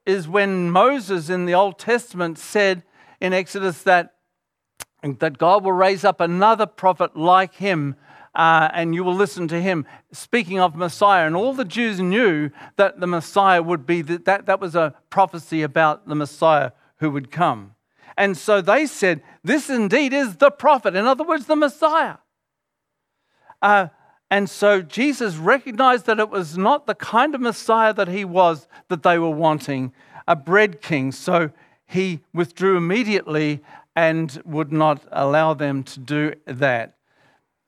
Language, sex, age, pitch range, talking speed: English, male, 50-69, 160-210 Hz, 160 wpm